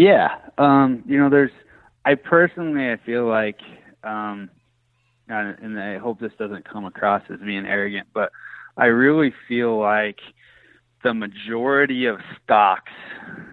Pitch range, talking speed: 105-130 Hz, 135 wpm